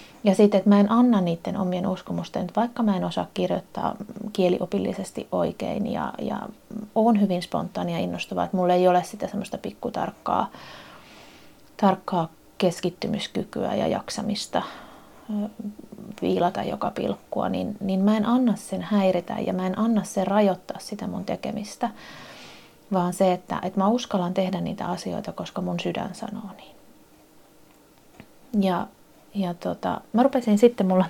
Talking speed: 140 wpm